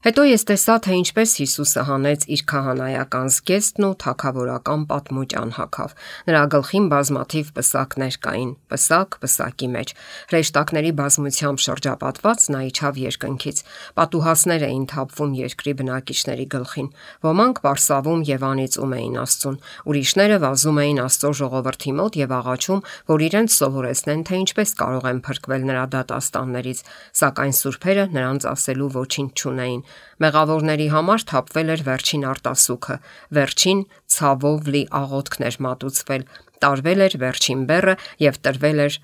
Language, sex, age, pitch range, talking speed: English, female, 50-69, 130-155 Hz, 85 wpm